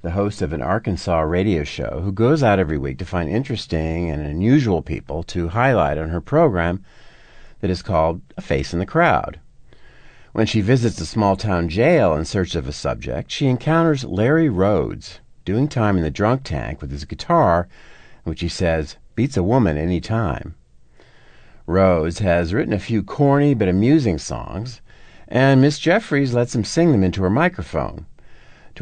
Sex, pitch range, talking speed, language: male, 85-120 Hz, 175 wpm, English